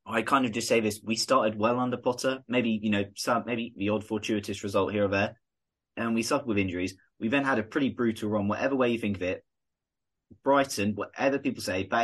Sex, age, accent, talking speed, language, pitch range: male, 20-39, British, 230 wpm, English, 100-115 Hz